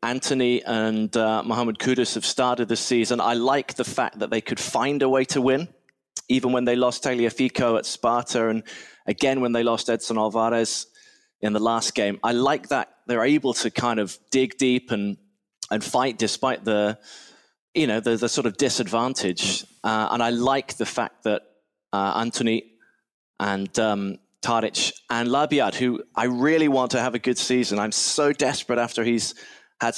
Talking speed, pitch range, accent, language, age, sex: 180 wpm, 110-130 Hz, British, Dutch, 20-39, male